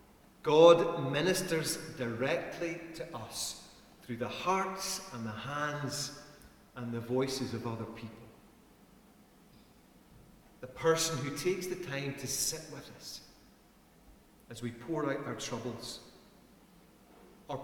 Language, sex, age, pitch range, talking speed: English, male, 40-59, 130-180 Hz, 115 wpm